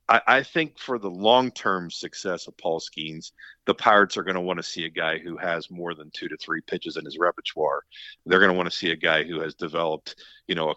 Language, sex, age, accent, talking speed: English, male, 50-69, American, 245 wpm